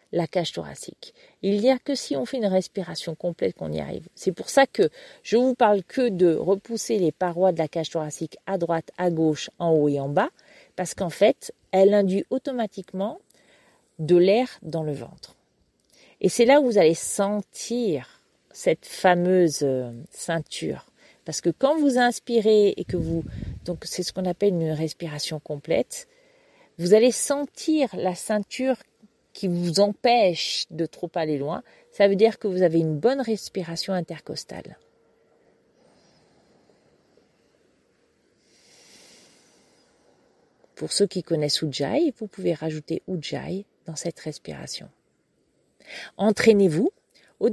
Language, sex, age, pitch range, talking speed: French, female, 40-59, 165-235 Hz, 145 wpm